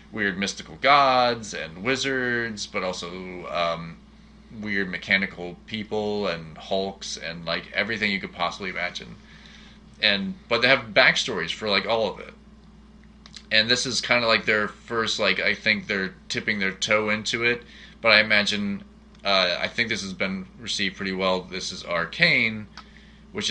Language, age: English, 30-49